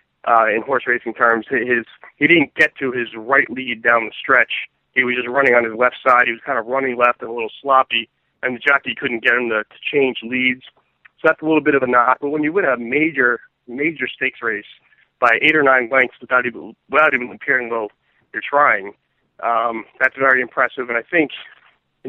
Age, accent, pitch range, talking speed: 40-59, American, 120-140 Hz, 225 wpm